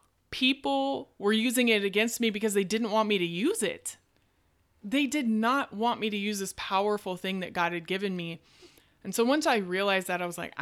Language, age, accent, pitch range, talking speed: English, 20-39, American, 165-205 Hz, 215 wpm